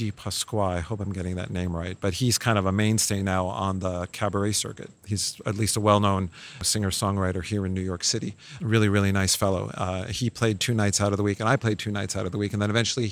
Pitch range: 100-120 Hz